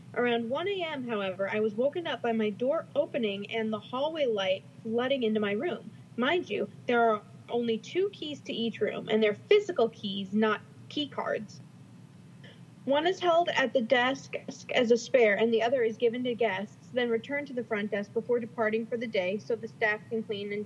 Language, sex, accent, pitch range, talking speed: English, female, American, 220-270 Hz, 205 wpm